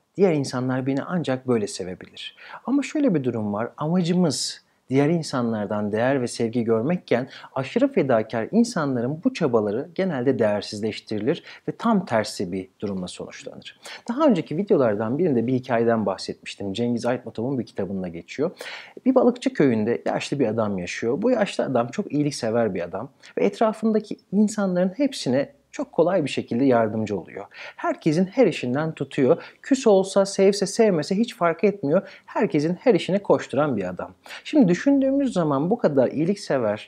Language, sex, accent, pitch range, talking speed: Turkish, male, native, 115-195 Hz, 145 wpm